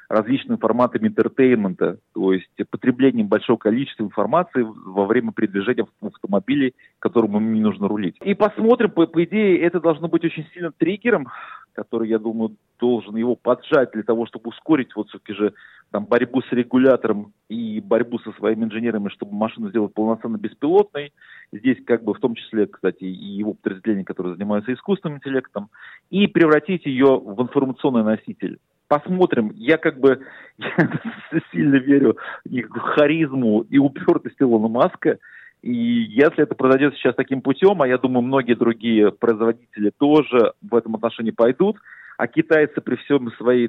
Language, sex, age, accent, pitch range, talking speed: Russian, male, 40-59, native, 110-145 Hz, 155 wpm